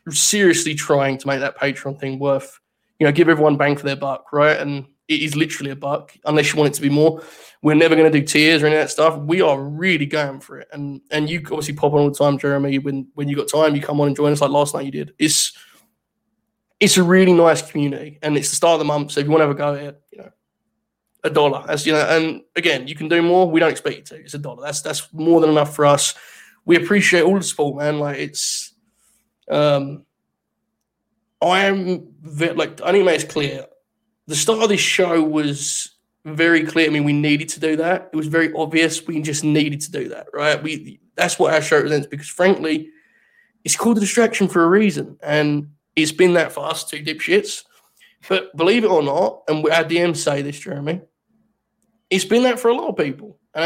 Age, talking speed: 20-39, 235 wpm